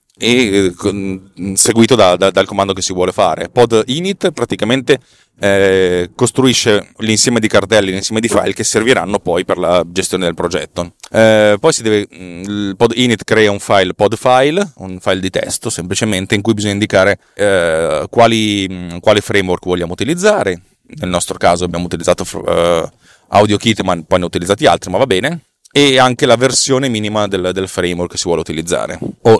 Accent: native